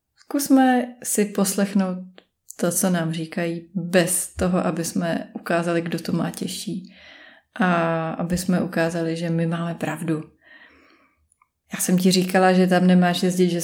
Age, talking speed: 20-39, 145 wpm